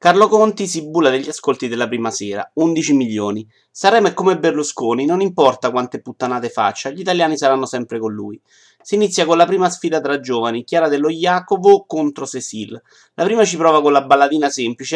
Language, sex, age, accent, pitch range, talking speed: Italian, male, 30-49, native, 125-180 Hz, 190 wpm